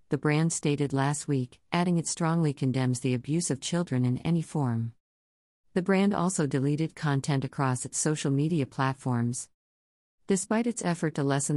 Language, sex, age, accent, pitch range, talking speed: English, female, 50-69, American, 130-160 Hz, 160 wpm